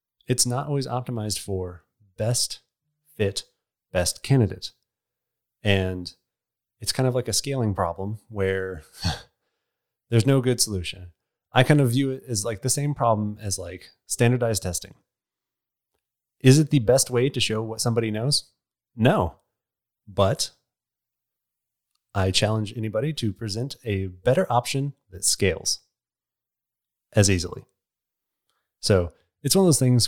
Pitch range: 95-125 Hz